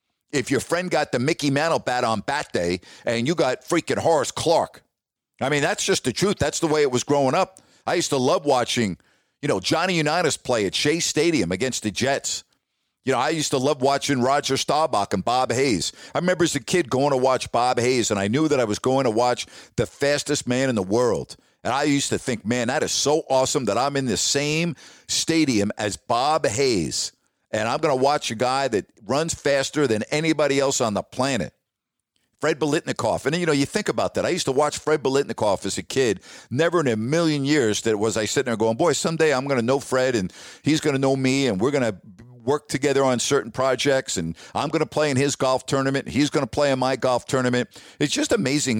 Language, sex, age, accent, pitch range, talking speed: English, male, 50-69, American, 125-155 Hz, 235 wpm